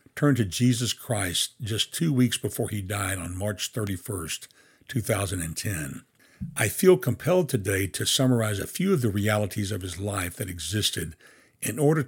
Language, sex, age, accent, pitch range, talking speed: English, male, 60-79, American, 100-130 Hz, 160 wpm